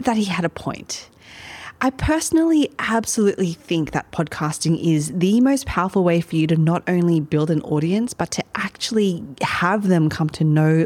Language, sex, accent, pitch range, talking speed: English, female, Australian, 160-220 Hz, 175 wpm